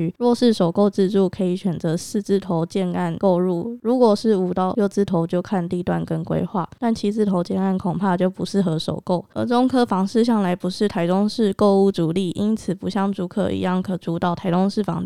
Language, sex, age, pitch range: Chinese, female, 20-39, 180-205 Hz